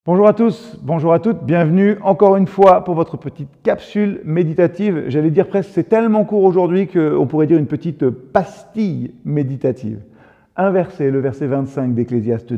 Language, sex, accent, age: French, male, French, 40-59